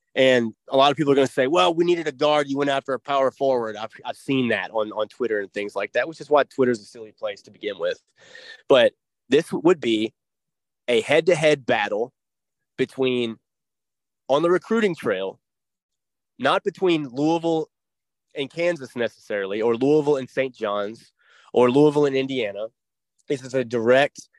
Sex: male